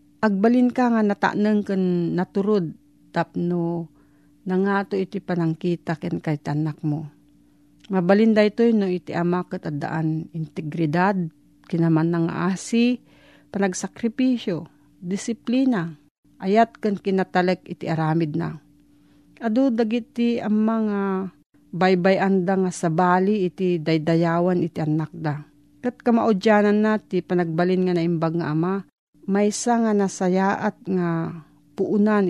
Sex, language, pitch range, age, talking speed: female, Filipino, 165-205 Hz, 40-59, 110 wpm